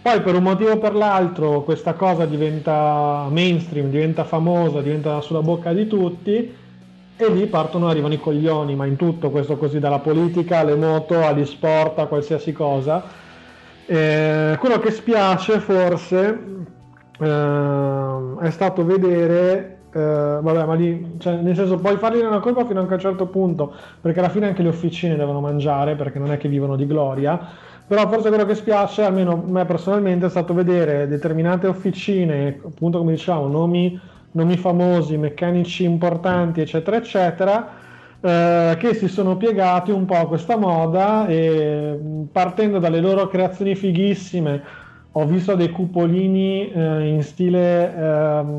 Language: Italian